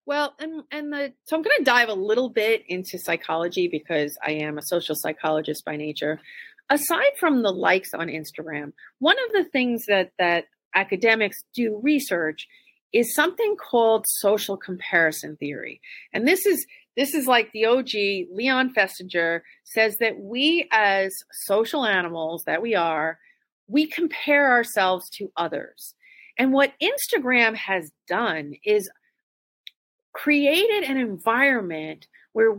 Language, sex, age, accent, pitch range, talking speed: English, female, 40-59, American, 190-295 Hz, 140 wpm